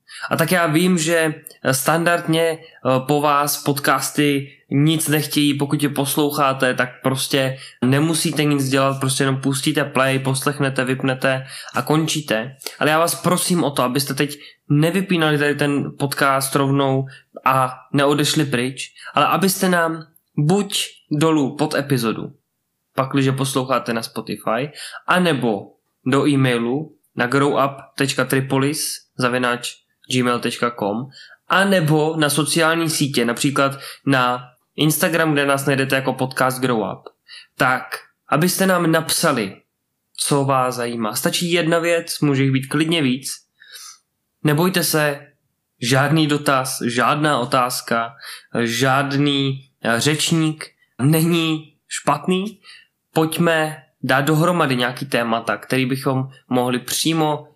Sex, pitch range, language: male, 130-155 Hz, Czech